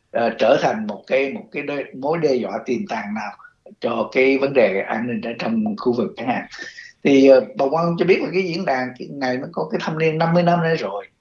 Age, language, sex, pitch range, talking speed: 60-79, Vietnamese, male, 120-165 Hz, 250 wpm